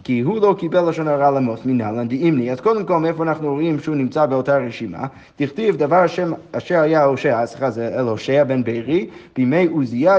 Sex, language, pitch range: male, Hebrew, 135-180 Hz